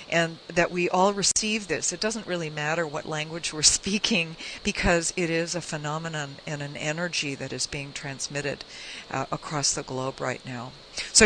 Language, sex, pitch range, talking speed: English, female, 155-200 Hz, 175 wpm